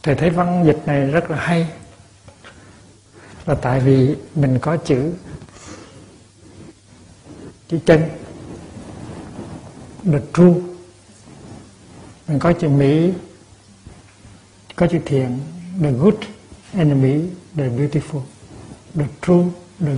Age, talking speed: 60-79, 100 wpm